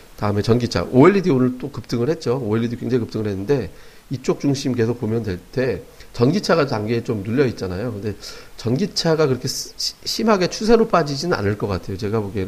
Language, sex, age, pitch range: Korean, male, 40-59, 110-140 Hz